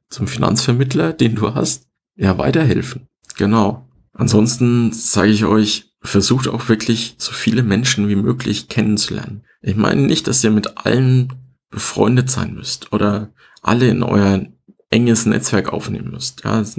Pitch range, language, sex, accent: 100-125 Hz, German, male, German